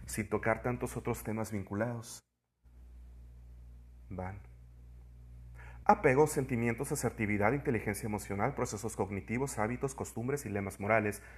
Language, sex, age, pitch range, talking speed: Spanish, male, 40-59, 95-125 Hz, 100 wpm